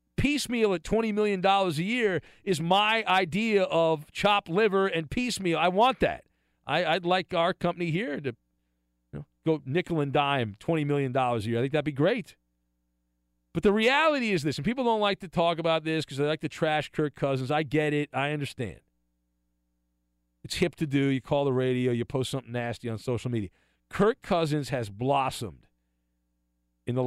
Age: 40-59